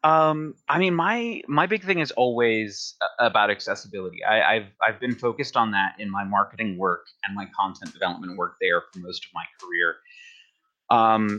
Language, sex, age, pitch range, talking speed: English, male, 30-49, 95-120 Hz, 180 wpm